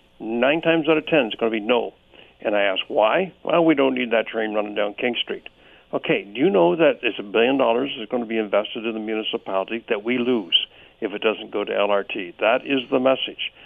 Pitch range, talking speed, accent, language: 110-140 Hz, 235 wpm, American, English